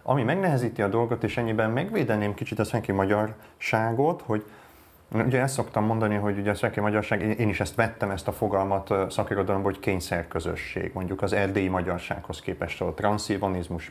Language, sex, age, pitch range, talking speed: Hungarian, male, 30-49, 95-120 Hz, 165 wpm